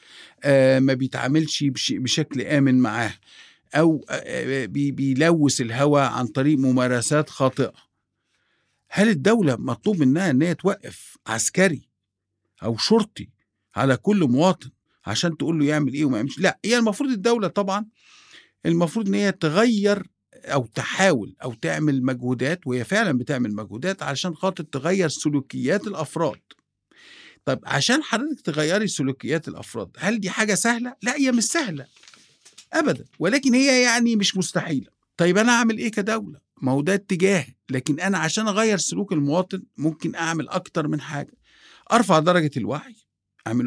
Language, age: Arabic, 50-69